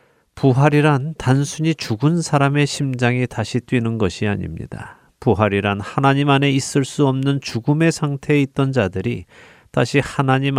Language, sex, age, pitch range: Korean, male, 40-59, 110-140 Hz